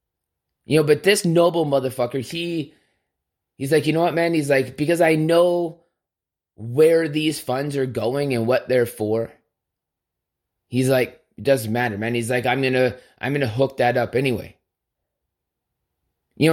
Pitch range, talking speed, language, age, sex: 120-155 Hz, 155 wpm, English, 20-39, male